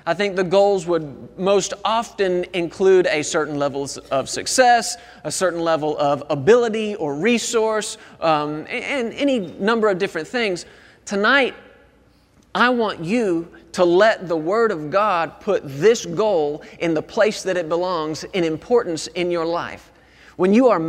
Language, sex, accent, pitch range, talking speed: English, male, American, 165-230 Hz, 155 wpm